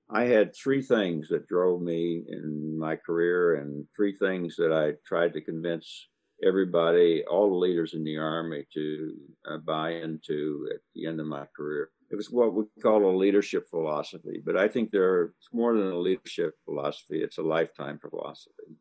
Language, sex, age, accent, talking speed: English, male, 60-79, American, 175 wpm